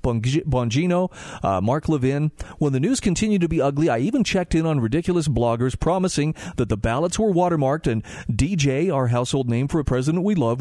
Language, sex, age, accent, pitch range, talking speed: English, male, 40-59, American, 115-170 Hz, 190 wpm